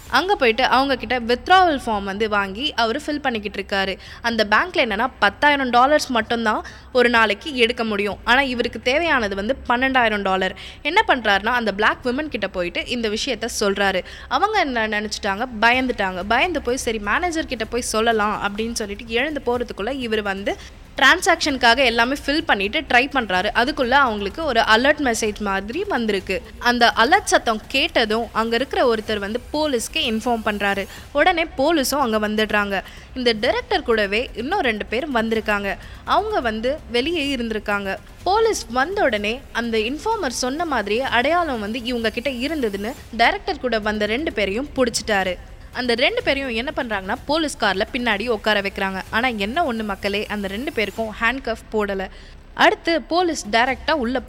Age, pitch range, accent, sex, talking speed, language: 20-39, 215-280 Hz, native, female, 150 wpm, Tamil